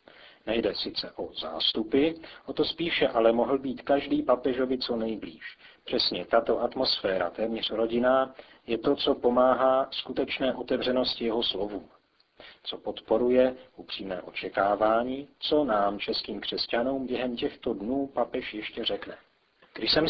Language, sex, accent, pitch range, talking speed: Czech, male, native, 115-130 Hz, 130 wpm